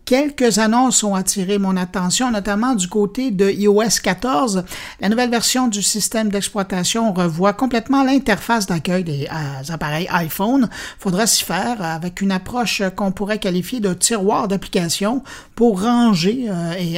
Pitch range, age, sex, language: 175-220 Hz, 50-69, male, French